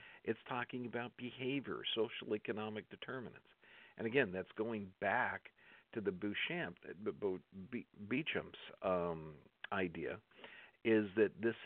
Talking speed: 115 wpm